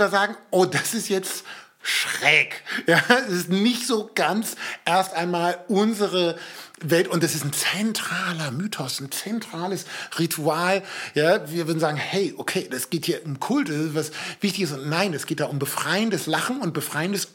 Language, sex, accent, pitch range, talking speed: German, male, German, 160-200 Hz, 175 wpm